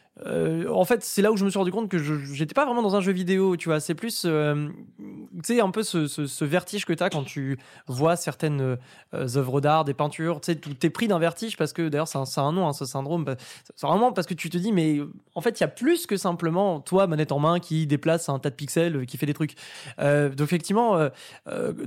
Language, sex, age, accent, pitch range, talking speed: French, male, 20-39, French, 145-185 Hz, 265 wpm